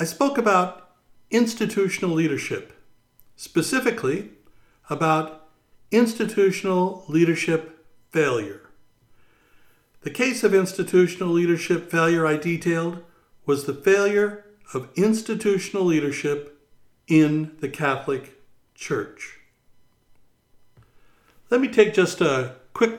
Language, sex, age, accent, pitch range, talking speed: English, male, 60-79, American, 140-195 Hz, 90 wpm